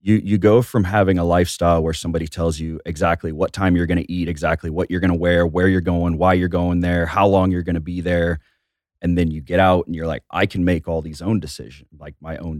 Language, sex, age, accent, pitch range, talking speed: English, male, 30-49, American, 80-95 Hz, 265 wpm